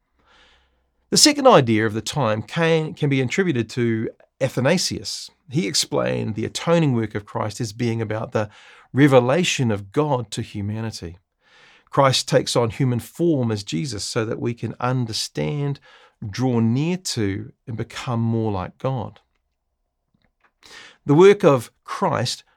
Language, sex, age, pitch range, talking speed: English, male, 40-59, 105-135 Hz, 135 wpm